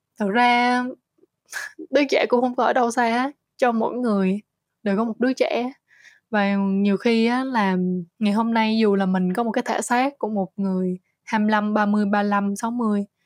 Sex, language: female, Vietnamese